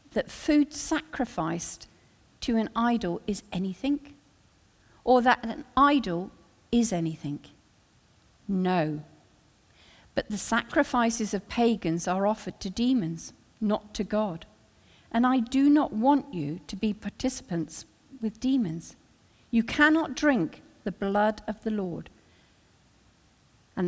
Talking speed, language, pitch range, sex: 120 wpm, English, 175-255 Hz, female